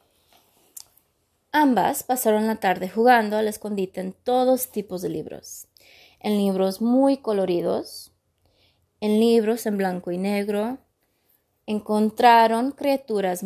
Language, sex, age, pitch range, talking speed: Spanish, female, 20-39, 200-250 Hz, 105 wpm